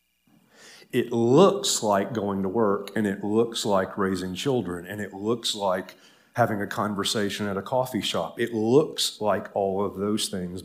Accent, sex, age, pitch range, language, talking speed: American, male, 40-59, 95-110 Hz, English, 170 wpm